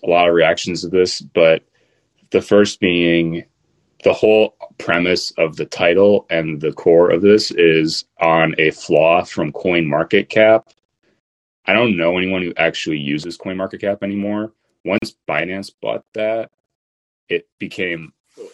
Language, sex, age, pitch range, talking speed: English, male, 30-49, 80-100 Hz, 150 wpm